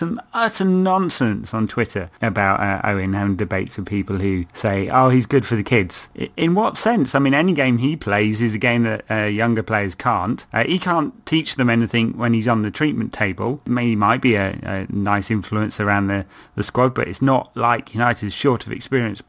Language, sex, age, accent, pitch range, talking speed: English, male, 30-49, British, 100-125 Hz, 220 wpm